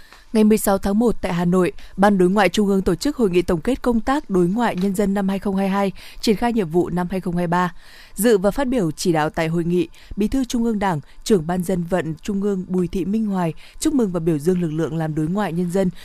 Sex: female